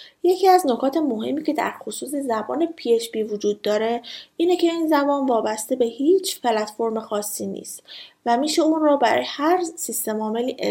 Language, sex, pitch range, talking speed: Persian, female, 225-295 Hz, 160 wpm